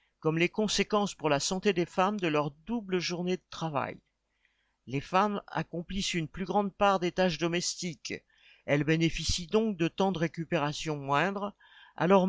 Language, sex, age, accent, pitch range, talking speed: French, male, 50-69, French, 150-190 Hz, 160 wpm